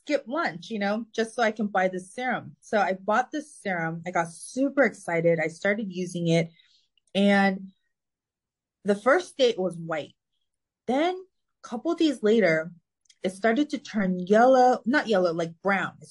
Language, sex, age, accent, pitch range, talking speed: English, female, 30-49, American, 175-235 Hz, 175 wpm